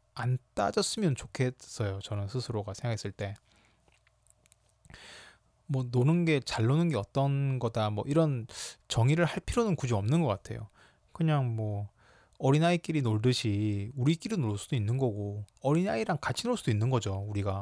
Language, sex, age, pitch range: Korean, male, 20-39, 110-140 Hz